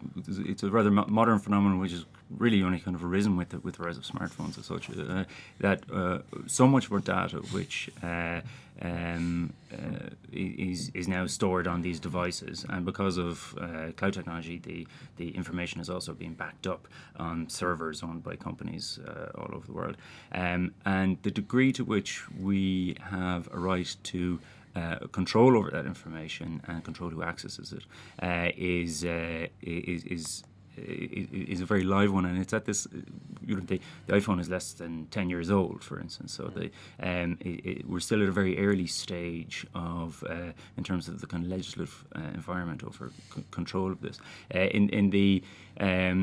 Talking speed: 190 wpm